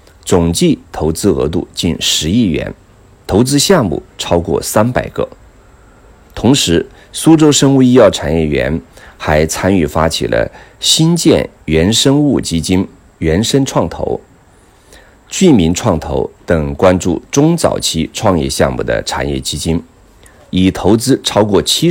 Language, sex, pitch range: Chinese, male, 75-125 Hz